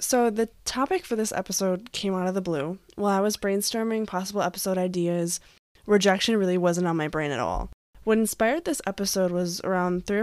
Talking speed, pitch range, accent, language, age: 195 wpm, 175-205 Hz, American, English, 10-29